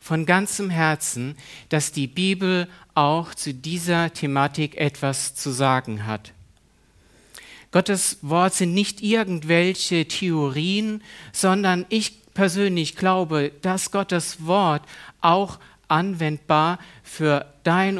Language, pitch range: German, 140-180 Hz